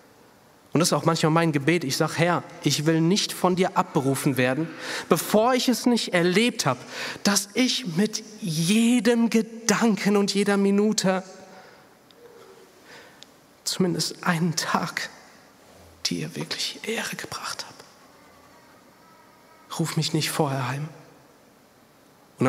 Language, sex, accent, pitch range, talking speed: German, male, German, 125-165 Hz, 120 wpm